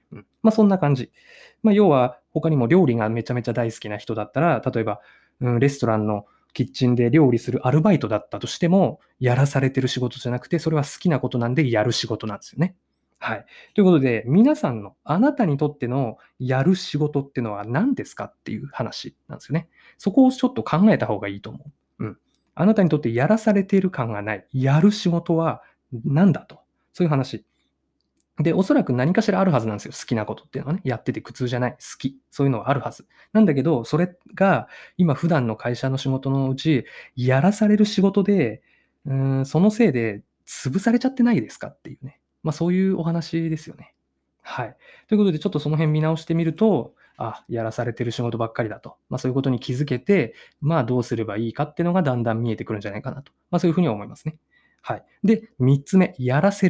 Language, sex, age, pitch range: Japanese, male, 20-39, 120-180 Hz